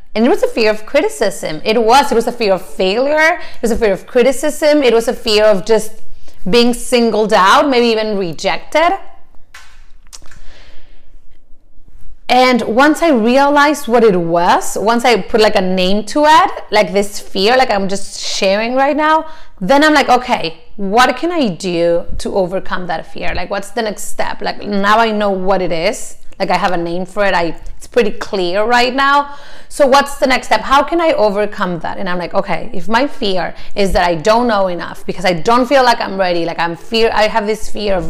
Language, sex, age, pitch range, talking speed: English, female, 30-49, 195-255 Hz, 210 wpm